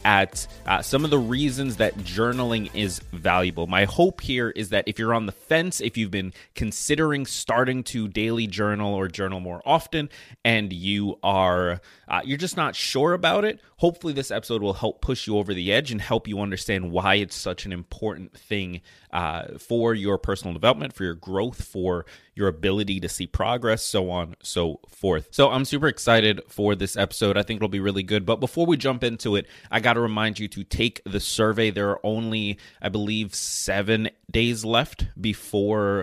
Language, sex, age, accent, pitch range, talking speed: English, male, 30-49, American, 95-120 Hz, 190 wpm